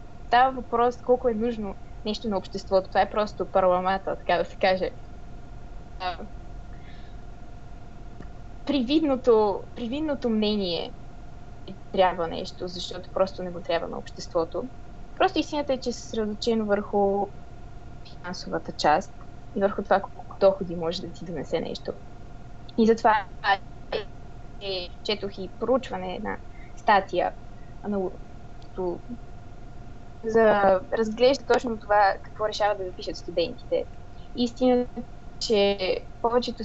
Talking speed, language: 115 wpm, Bulgarian